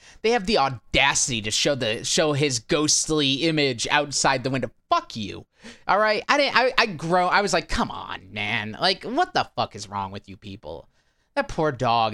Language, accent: English, American